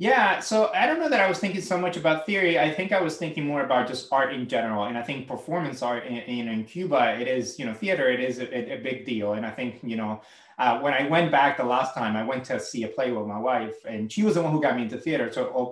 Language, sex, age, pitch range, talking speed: English, male, 30-49, 120-165 Hz, 300 wpm